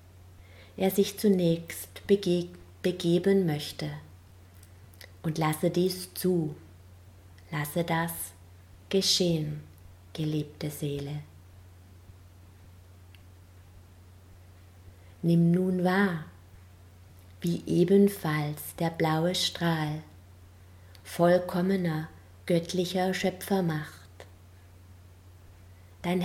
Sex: female